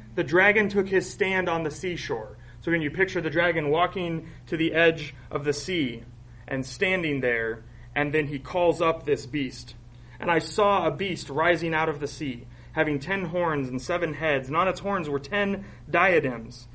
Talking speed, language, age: 195 wpm, English, 30-49